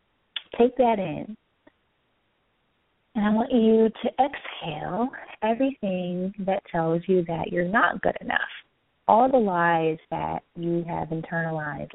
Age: 30-49